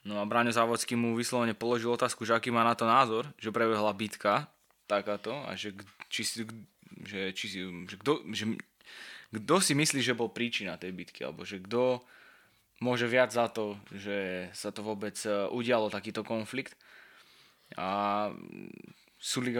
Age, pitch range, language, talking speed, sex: 20-39, 105-120 Hz, Slovak, 140 wpm, male